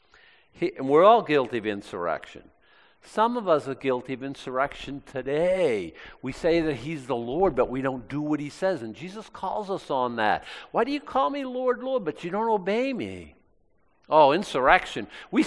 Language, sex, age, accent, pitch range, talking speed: English, male, 50-69, American, 115-185 Hz, 190 wpm